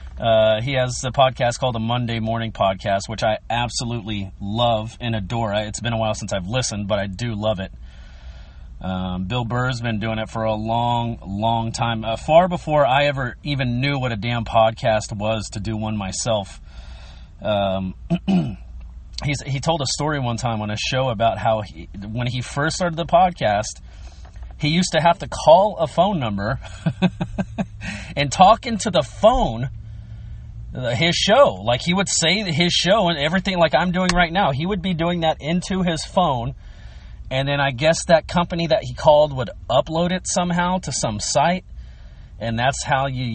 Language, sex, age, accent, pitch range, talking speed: English, male, 30-49, American, 110-155 Hz, 185 wpm